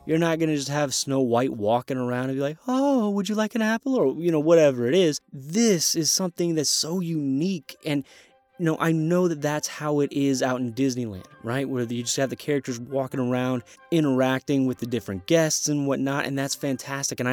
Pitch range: 125-160 Hz